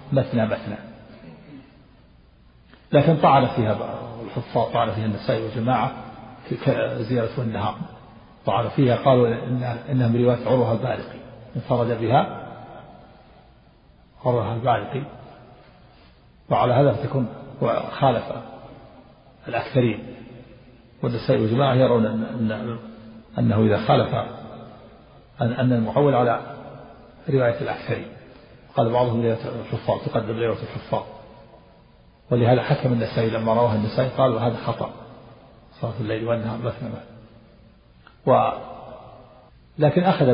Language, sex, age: Arabic, male, 50-69